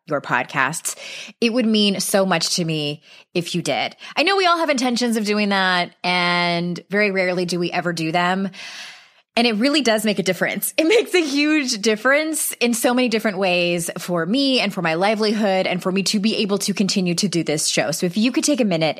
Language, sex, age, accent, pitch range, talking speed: English, female, 20-39, American, 170-220 Hz, 225 wpm